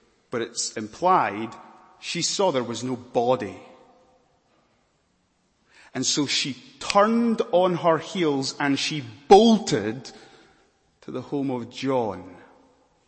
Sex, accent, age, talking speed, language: male, British, 30-49, 110 wpm, English